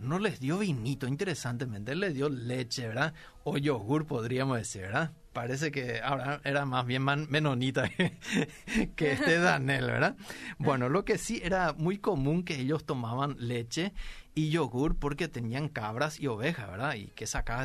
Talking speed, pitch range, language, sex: 160 wpm, 120-170 Hz, Spanish, male